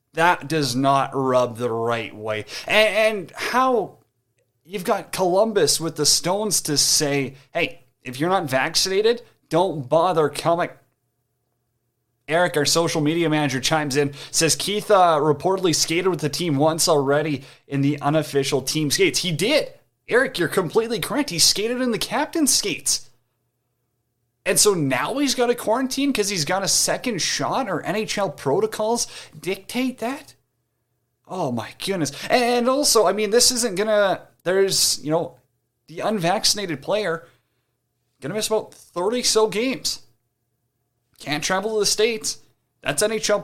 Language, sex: English, male